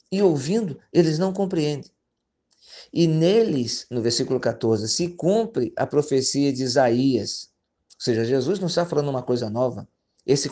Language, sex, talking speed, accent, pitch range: Portuguese, male, 150 wpm, Brazilian, 130-170 Hz